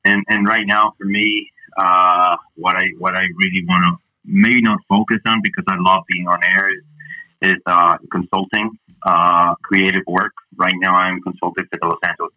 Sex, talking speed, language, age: male, 190 wpm, English, 30-49